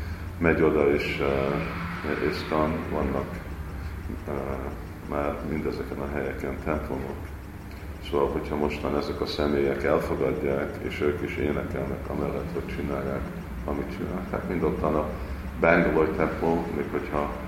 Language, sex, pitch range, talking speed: Hungarian, male, 70-85 Hz, 115 wpm